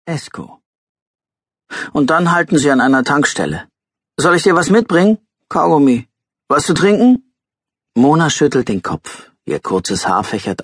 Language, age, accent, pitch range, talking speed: German, 40-59, German, 115-160 Hz, 140 wpm